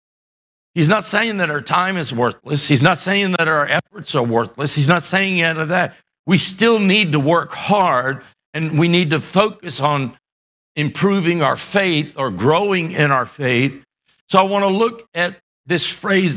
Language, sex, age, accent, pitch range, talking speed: English, male, 60-79, American, 140-175 Hz, 185 wpm